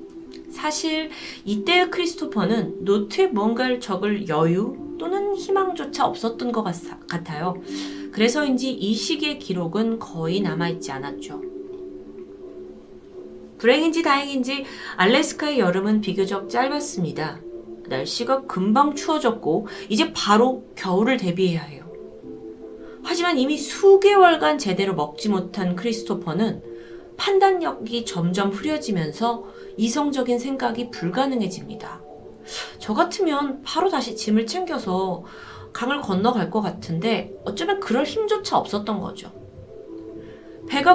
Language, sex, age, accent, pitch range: Korean, female, 30-49, native, 185-295 Hz